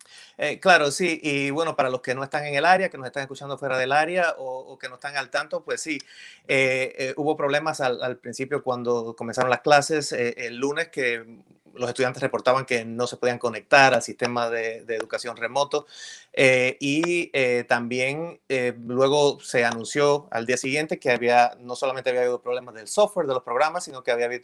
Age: 30-49